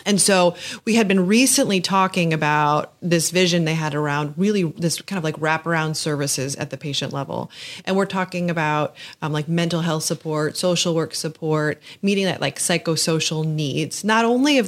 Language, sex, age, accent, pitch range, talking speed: English, female, 30-49, American, 155-180 Hz, 180 wpm